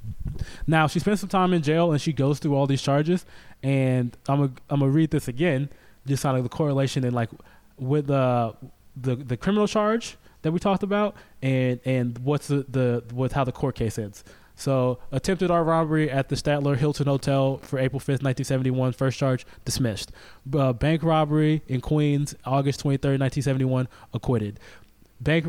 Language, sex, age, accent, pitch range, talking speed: English, male, 20-39, American, 130-150 Hz, 180 wpm